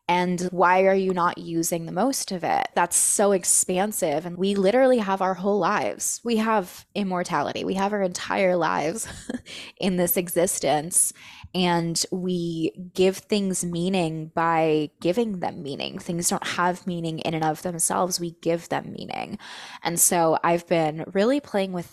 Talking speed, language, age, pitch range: 160 wpm, English, 20-39, 165-190 Hz